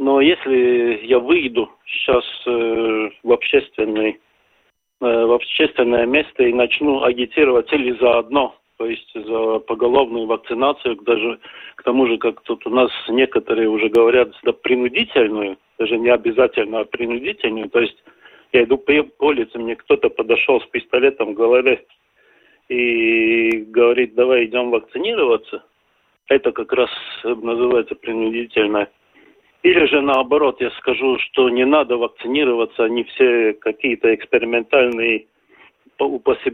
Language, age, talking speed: Russian, 40-59, 125 wpm